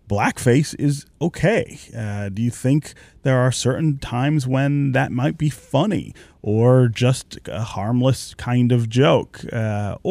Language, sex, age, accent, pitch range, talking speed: English, male, 30-49, American, 100-130 Hz, 140 wpm